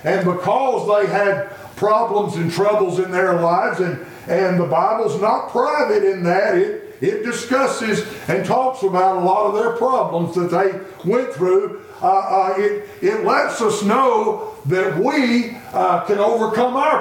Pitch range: 190-245 Hz